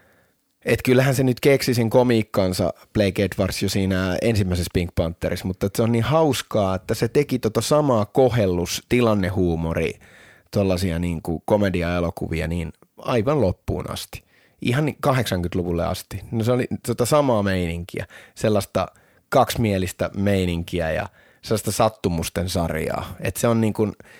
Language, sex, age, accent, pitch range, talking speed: Finnish, male, 30-49, native, 90-115 Hz, 130 wpm